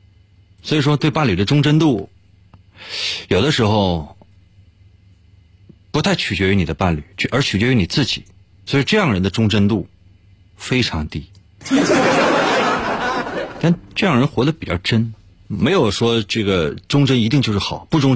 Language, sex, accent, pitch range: Chinese, male, native, 95-135 Hz